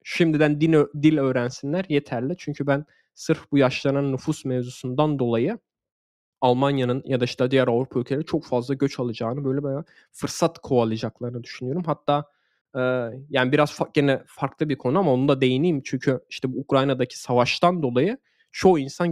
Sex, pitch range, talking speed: male, 125-155 Hz, 155 wpm